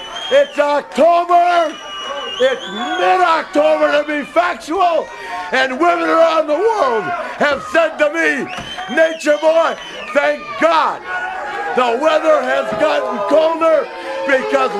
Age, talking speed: 50-69, 105 wpm